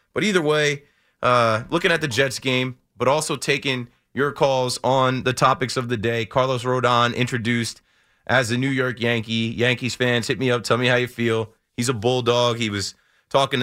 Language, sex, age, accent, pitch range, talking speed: English, male, 30-49, American, 110-130 Hz, 195 wpm